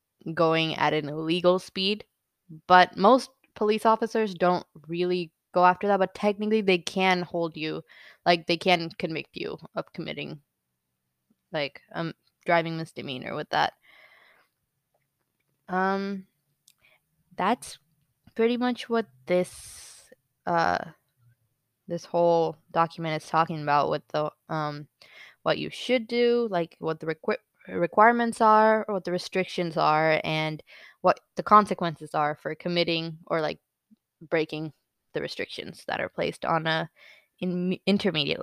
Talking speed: 130 wpm